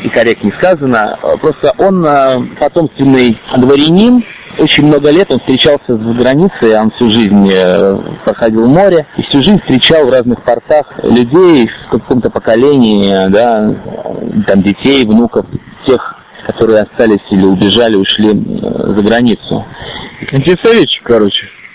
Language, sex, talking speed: Russian, male, 115 wpm